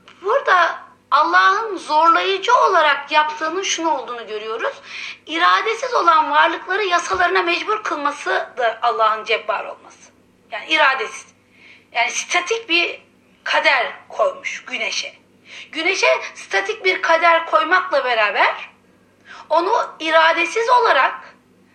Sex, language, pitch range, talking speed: female, Turkish, 270-350 Hz, 95 wpm